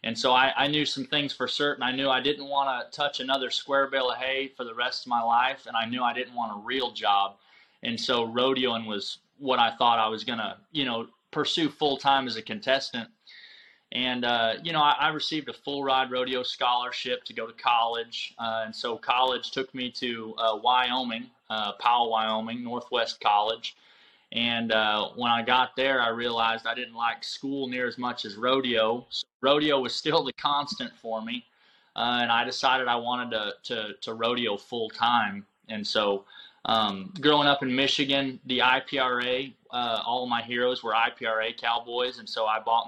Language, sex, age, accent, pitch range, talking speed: English, male, 20-39, American, 115-130 Hz, 200 wpm